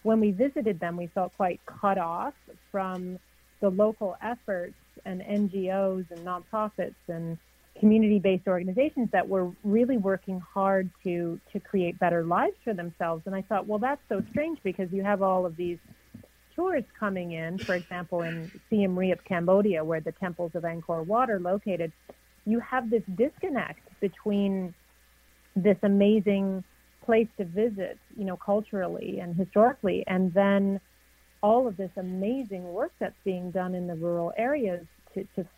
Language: English